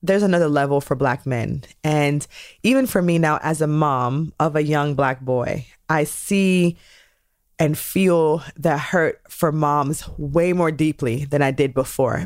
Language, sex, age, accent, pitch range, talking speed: English, female, 20-39, American, 140-170 Hz, 165 wpm